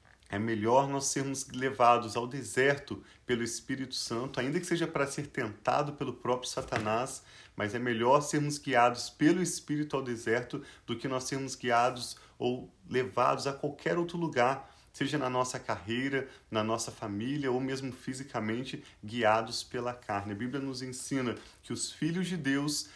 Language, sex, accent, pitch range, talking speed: Portuguese, male, Brazilian, 115-140 Hz, 160 wpm